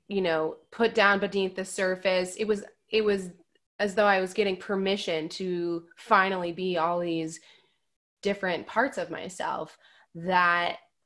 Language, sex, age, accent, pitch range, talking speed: English, female, 20-39, American, 170-200 Hz, 145 wpm